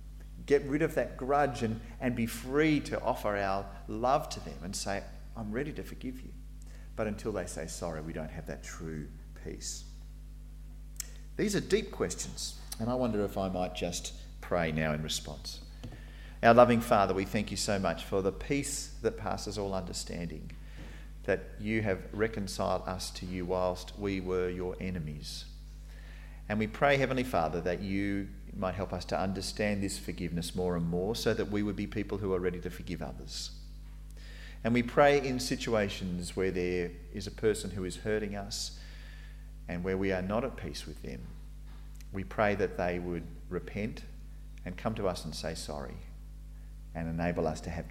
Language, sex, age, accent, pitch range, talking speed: English, male, 40-59, Australian, 80-105 Hz, 180 wpm